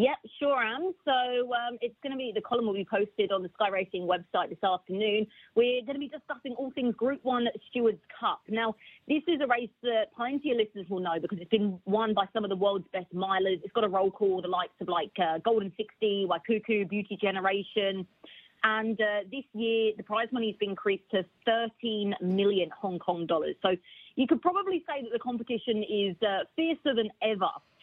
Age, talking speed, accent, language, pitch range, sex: 30-49, 210 wpm, British, English, 190-235 Hz, female